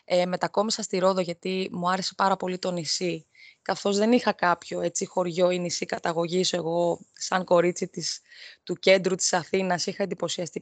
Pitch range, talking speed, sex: 180-235 Hz, 170 wpm, female